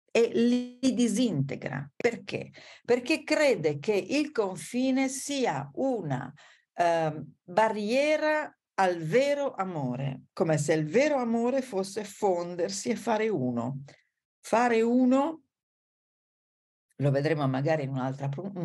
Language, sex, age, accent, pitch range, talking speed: Italian, female, 50-69, native, 140-220 Hz, 105 wpm